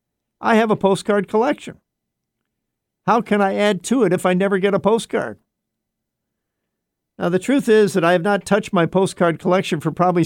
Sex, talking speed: male, 180 wpm